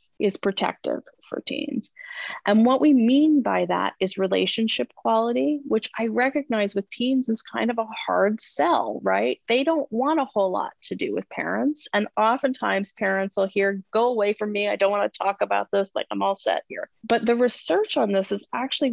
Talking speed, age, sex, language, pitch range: 200 wpm, 30-49, female, English, 190-235 Hz